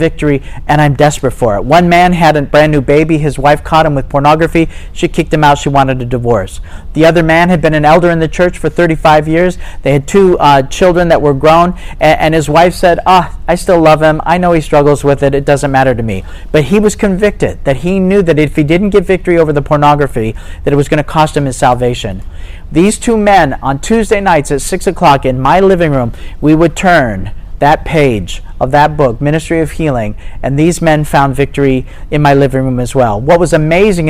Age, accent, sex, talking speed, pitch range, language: 40-59, American, male, 230 wpm, 135-170 Hz, English